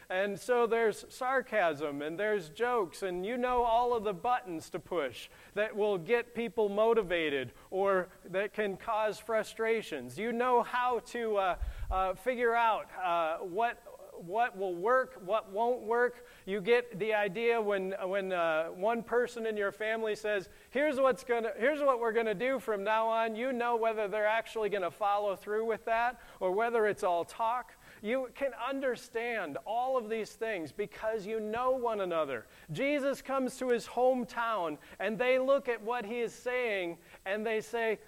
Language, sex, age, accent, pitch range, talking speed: English, male, 40-59, American, 210-250 Hz, 175 wpm